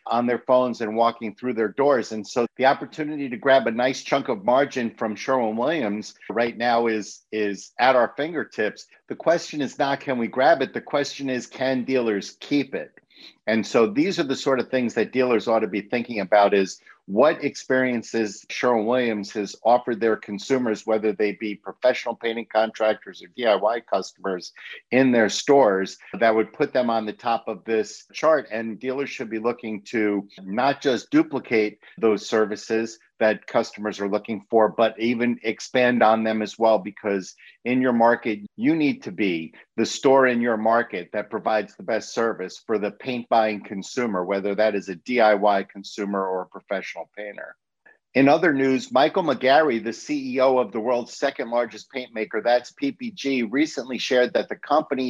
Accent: American